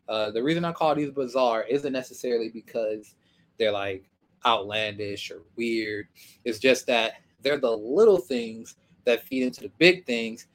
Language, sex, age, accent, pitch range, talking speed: English, male, 20-39, American, 110-145 Hz, 160 wpm